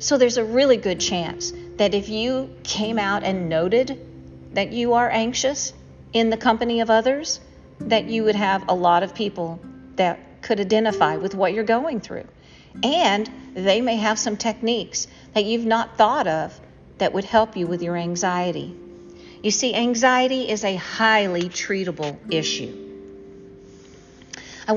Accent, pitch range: American, 170-225 Hz